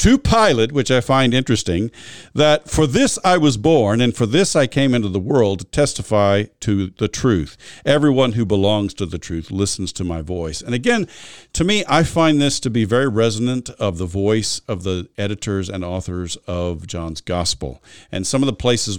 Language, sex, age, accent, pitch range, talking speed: English, male, 50-69, American, 95-125 Hz, 195 wpm